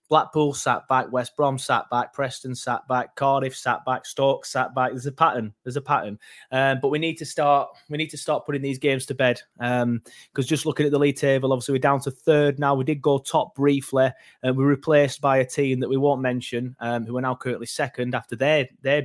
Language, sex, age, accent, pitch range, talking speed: English, male, 20-39, British, 120-145 Hz, 240 wpm